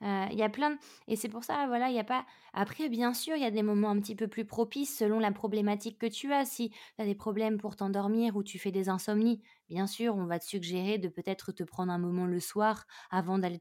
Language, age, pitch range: French, 20-39, 190-230 Hz